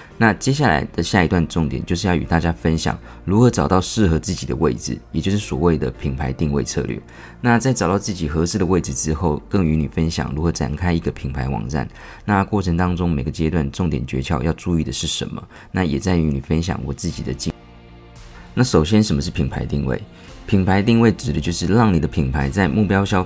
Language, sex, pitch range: Chinese, male, 75-95 Hz